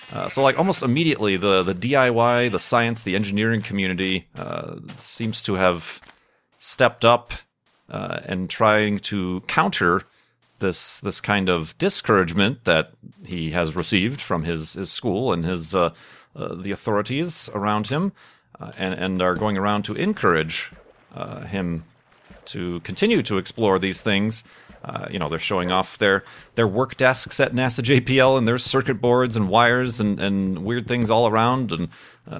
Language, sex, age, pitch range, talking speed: English, male, 40-59, 100-120 Hz, 165 wpm